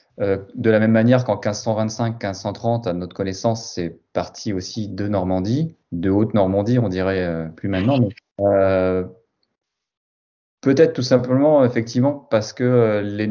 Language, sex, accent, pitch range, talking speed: French, male, French, 95-120 Hz, 145 wpm